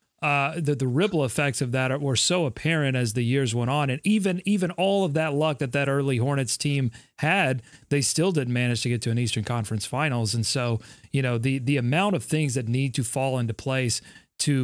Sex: male